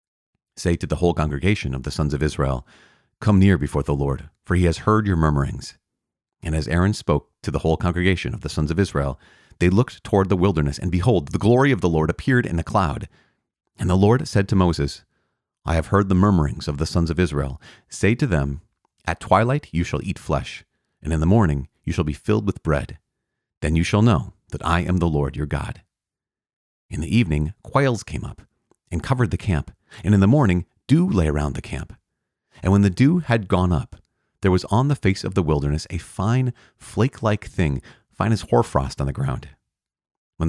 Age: 40-59